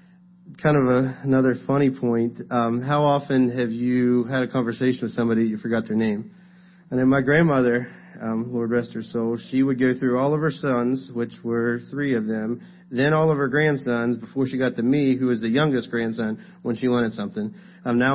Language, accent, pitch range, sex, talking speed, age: English, American, 120-150 Hz, male, 210 wpm, 30-49